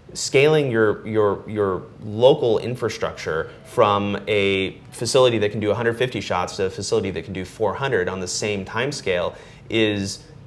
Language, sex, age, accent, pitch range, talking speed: English, male, 30-49, American, 95-115 Hz, 155 wpm